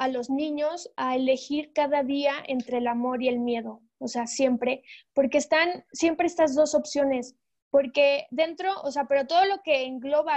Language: Spanish